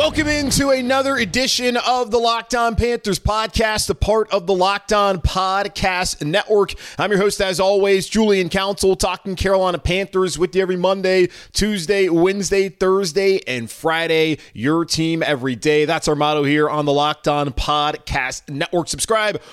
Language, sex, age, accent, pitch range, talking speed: English, male, 30-49, American, 140-200 Hz, 150 wpm